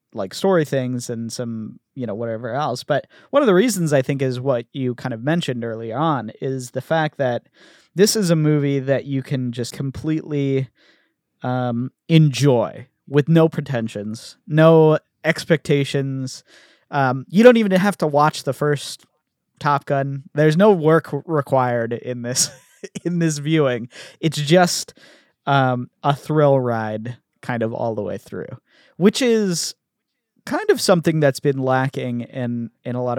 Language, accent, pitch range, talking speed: English, American, 125-160 Hz, 160 wpm